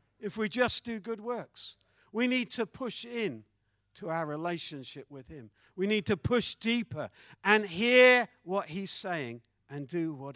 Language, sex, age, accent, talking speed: English, male, 50-69, British, 170 wpm